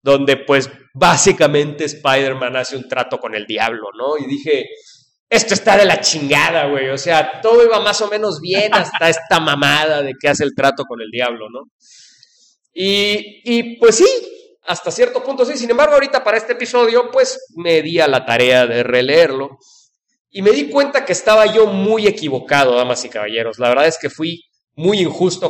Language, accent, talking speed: English, Mexican, 190 wpm